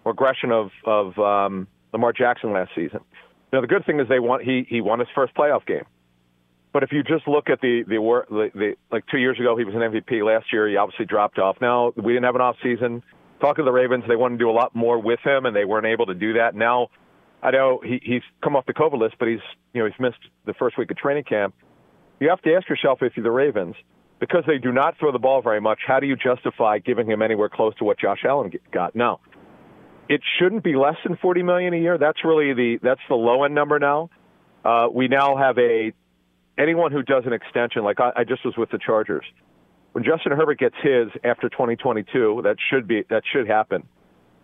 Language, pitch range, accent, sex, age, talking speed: English, 110-135 Hz, American, male, 40-59, 240 wpm